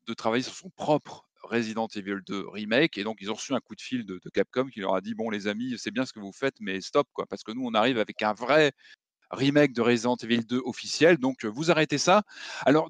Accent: French